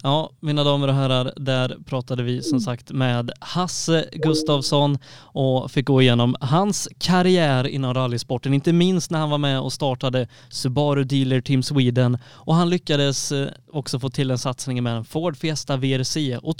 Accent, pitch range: native, 130-165 Hz